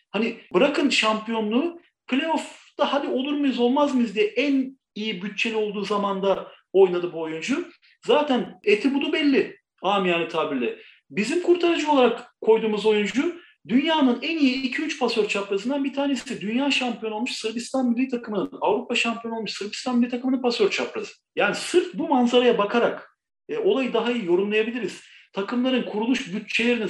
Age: 40-59